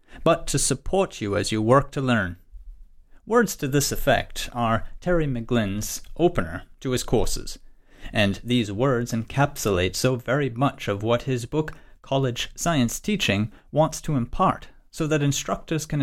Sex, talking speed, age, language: male, 155 wpm, 30-49, English